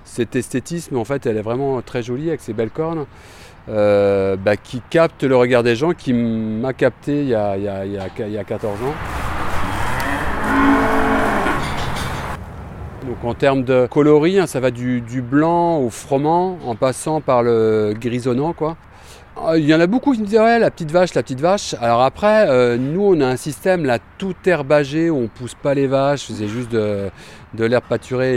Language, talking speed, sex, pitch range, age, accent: French, 195 wpm, male, 110-135 Hz, 40-59, French